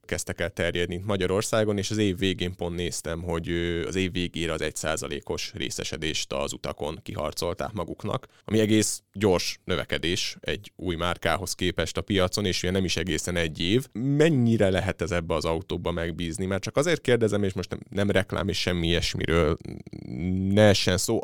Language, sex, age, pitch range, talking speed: Hungarian, male, 30-49, 90-110 Hz, 170 wpm